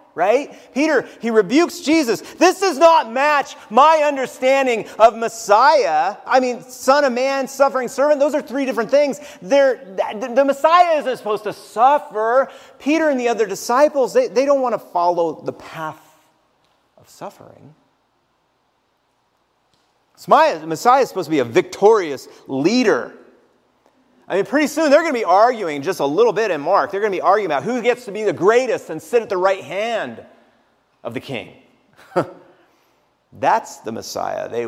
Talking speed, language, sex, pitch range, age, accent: 170 wpm, English, male, 195-290 Hz, 40-59, American